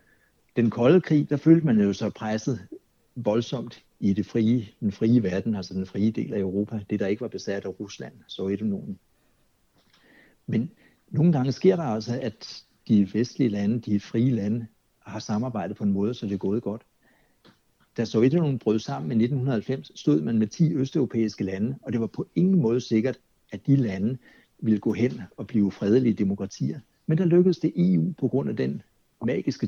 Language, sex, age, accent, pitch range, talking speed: Danish, male, 60-79, native, 105-135 Hz, 185 wpm